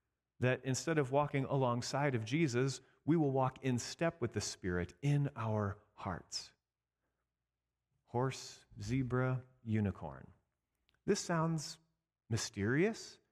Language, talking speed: English, 110 wpm